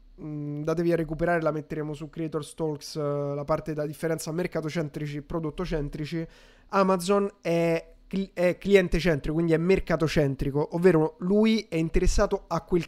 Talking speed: 155 wpm